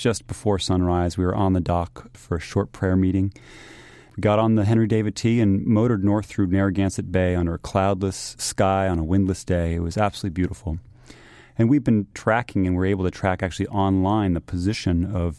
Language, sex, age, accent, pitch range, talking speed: English, male, 30-49, American, 90-110 Hz, 205 wpm